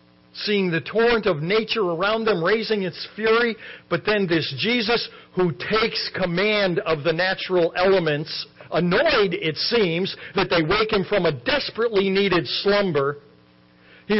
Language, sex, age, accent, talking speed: English, male, 60-79, American, 145 wpm